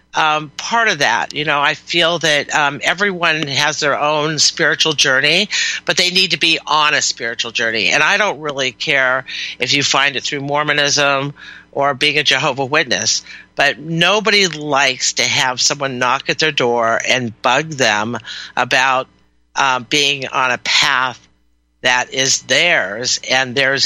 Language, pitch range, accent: English, 130-155 Hz, American